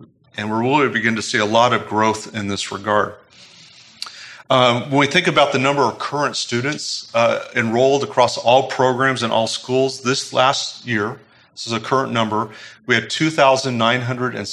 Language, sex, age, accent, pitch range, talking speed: English, male, 40-59, American, 105-125 Hz, 190 wpm